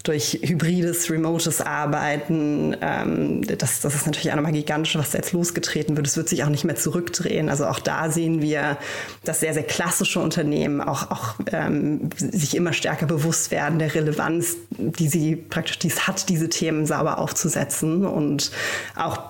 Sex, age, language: female, 20-39, German